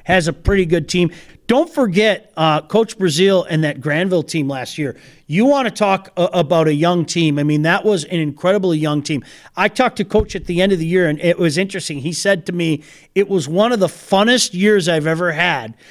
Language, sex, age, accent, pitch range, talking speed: English, male, 40-59, American, 170-220 Hz, 225 wpm